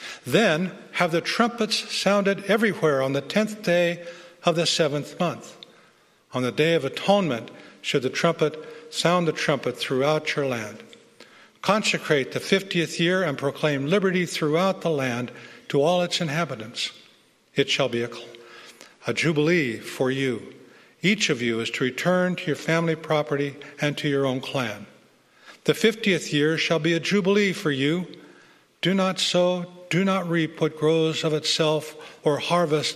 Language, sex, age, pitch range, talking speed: English, male, 60-79, 135-175 Hz, 155 wpm